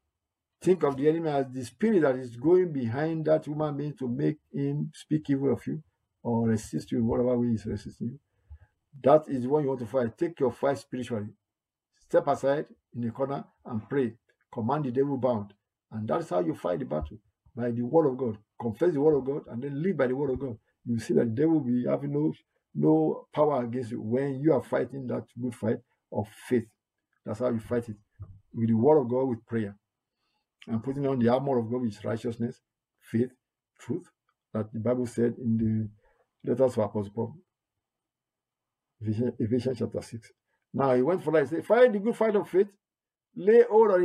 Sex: male